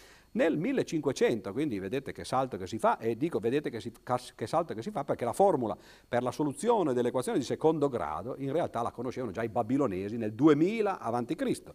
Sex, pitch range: male, 110-165 Hz